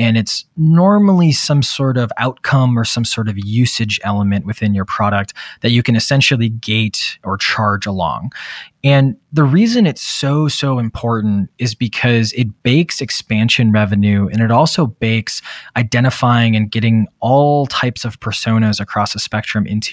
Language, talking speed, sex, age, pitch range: English, 155 wpm, male, 20-39, 105-130 Hz